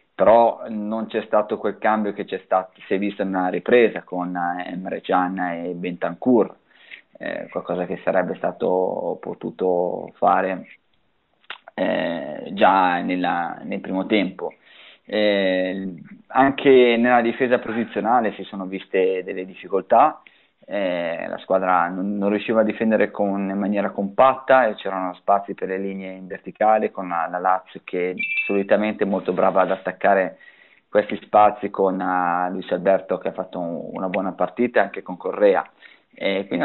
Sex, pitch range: male, 95-110 Hz